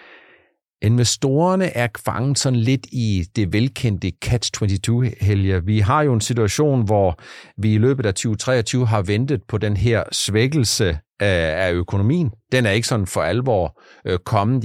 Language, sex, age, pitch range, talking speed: Danish, male, 60-79, 105-140 Hz, 145 wpm